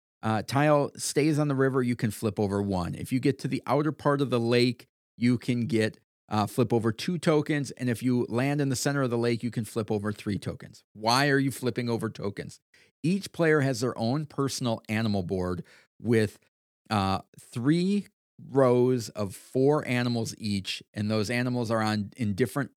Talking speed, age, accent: 195 wpm, 40-59, American